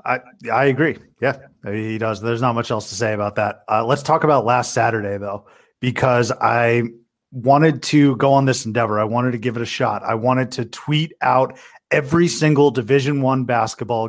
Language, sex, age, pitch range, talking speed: English, male, 30-49, 120-145 Hz, 195 wpm